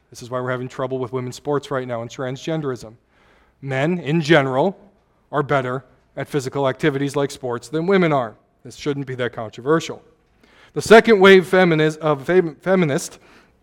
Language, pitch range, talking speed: English, 135-160 Hz, 155 wpm